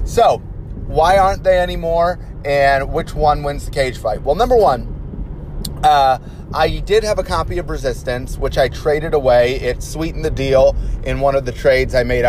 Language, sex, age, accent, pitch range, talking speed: English, male, 30-49, American, 125-165 Hz, 185 wpm